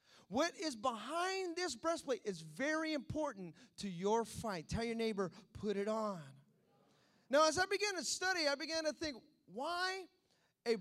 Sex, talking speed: male, 160 wpm